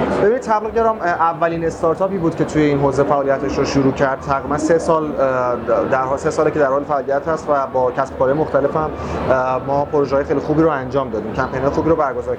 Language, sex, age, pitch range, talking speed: Persian, male, 30-49, 150-185 Hz, 200 wpm